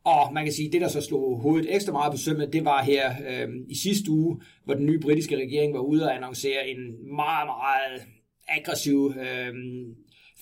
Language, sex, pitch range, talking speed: Danish, male, 135-155 Hz, 200 wpm